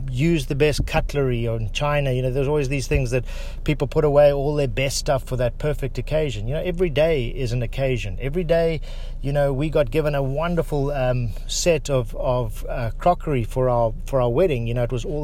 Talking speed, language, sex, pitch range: 220 wpm, English, male, 125-150 Hz